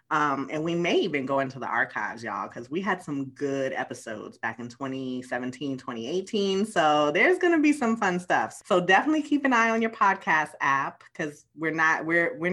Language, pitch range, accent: English, 140-190 Hz, American